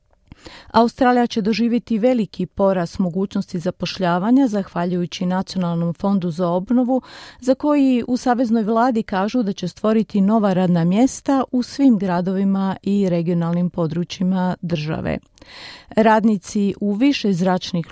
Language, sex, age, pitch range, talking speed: Croatian, female, 40-59, 180-225 Hz, 115 wpm